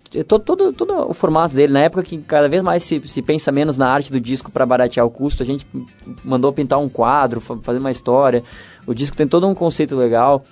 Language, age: Portuguese, 20-39